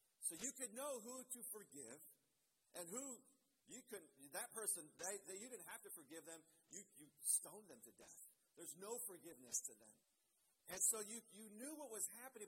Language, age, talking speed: English, 50-69, 190 wpm